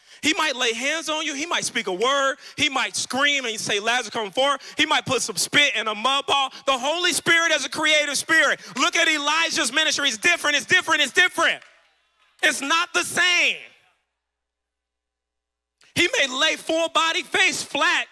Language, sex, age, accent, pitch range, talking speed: English, male, 30-49, American, 195-315 Hz, 185 wpm